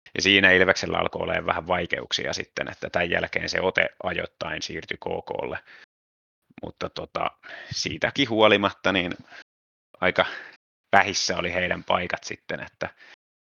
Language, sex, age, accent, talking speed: Finnish, male, 30-49, native, 120 wpm